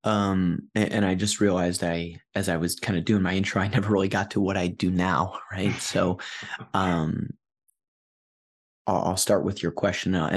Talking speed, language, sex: 195 wpm, English, male